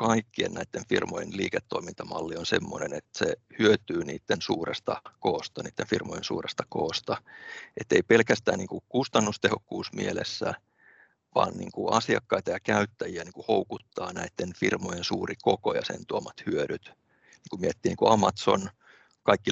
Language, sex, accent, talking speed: Finnish, male, native, 130 wpm